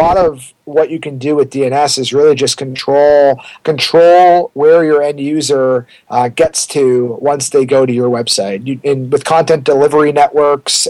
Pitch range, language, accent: 135-160 Hz, English, American